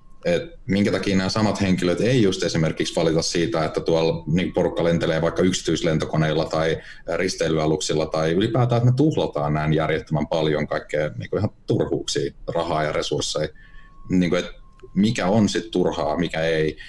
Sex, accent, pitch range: male, native, 80-95 Hz